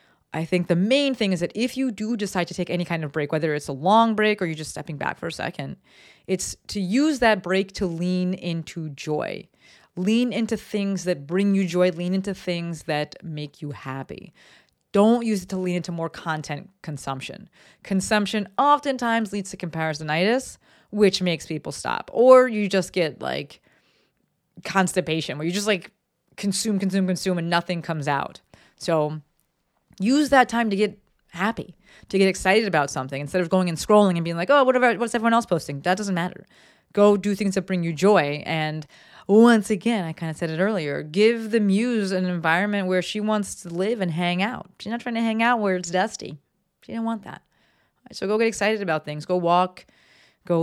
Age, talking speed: 30-49, 200 wpm